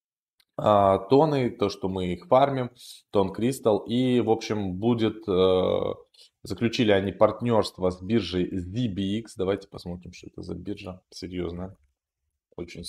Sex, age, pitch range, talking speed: male, 20-39, 90-120 Hz, 120 wpm